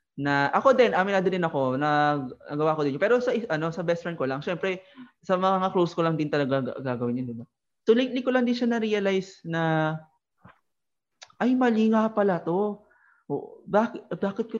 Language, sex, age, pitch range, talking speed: Filipino, male, 20-39, 145-220 Hz, 195 wpm